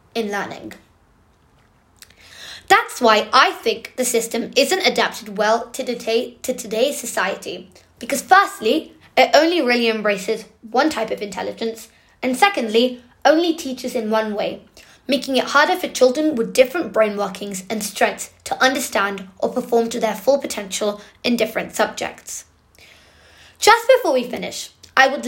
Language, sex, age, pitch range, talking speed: English, female, 20-39, 215-275 Hz, 140 wpm